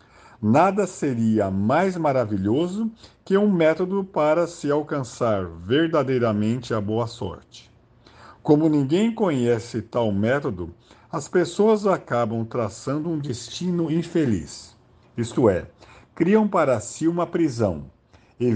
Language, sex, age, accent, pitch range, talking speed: Portuguese, male, 50-69, Brazilian, 110-170 Hz, 110 wpm